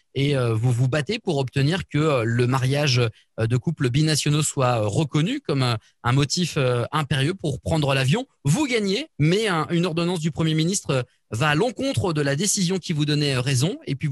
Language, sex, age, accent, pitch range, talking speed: French, male, 30-49, French, 130-165 Hz, 175 wpm